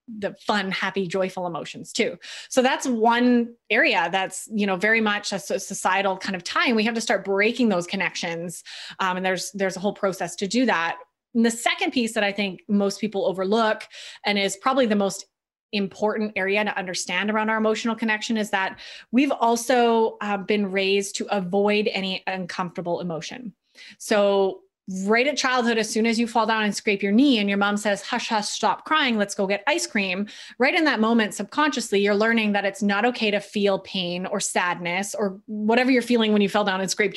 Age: 20-39